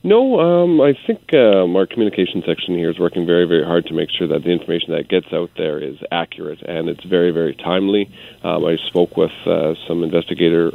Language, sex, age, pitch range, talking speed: English, male, 40-59, 85-100 Hz, 210 wpm